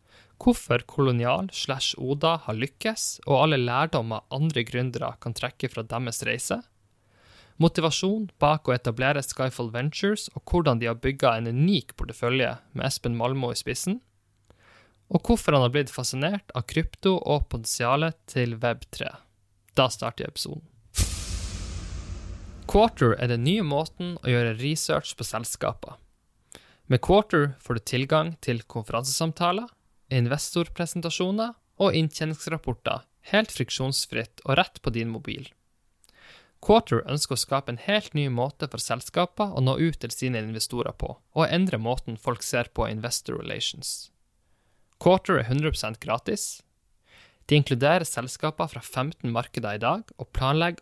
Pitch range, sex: 115-160 Hz, male